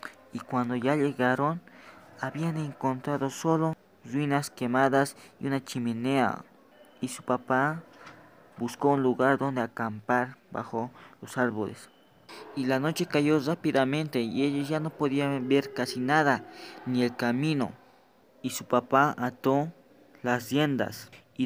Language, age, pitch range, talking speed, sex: English, 20-39, 120-140 Hz, 130 wpm, male